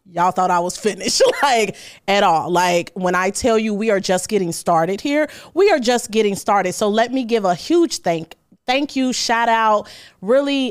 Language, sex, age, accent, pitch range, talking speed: English, female, 30-49, American, 180-250 Hz, 200 wpm